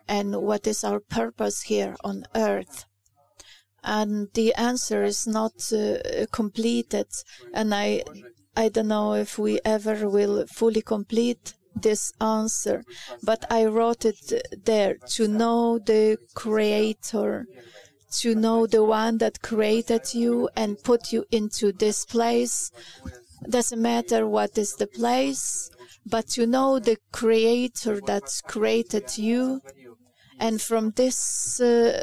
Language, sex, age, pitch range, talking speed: English, female, 30-49, 205-230 Hz, 125 wpm